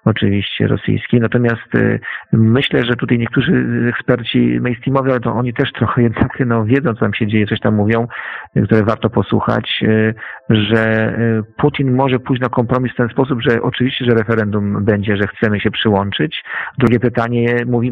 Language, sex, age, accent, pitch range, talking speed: Polish, male, 40-59, native, 110-125 Hz, 165 wpm